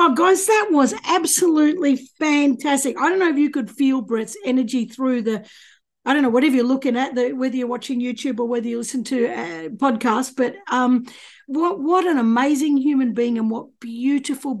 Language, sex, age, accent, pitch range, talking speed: English, female, 50-69, Australian, 230-290 Hz, 190 wpm